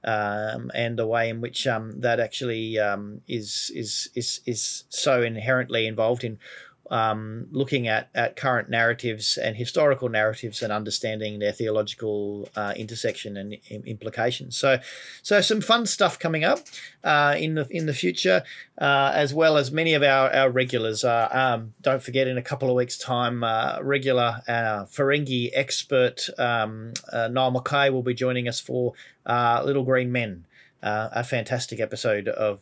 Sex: male